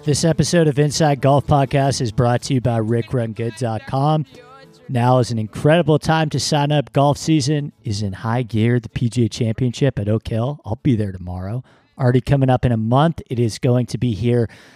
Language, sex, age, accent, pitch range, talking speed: English, male, 40-59, American, 115-145 Hz, 195 wpm